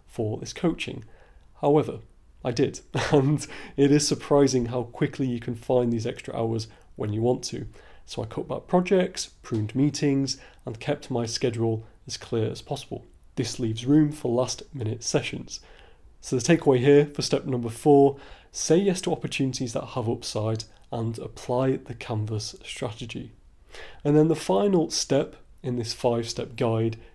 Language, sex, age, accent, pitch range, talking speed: English, male, 30-49, British, 120-145 Hz, 160 wpm